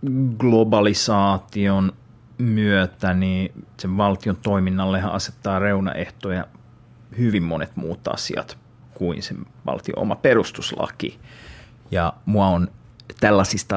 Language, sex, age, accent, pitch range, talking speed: Finnish, male, 30-49, native, 95-120 Hz, 85 wpm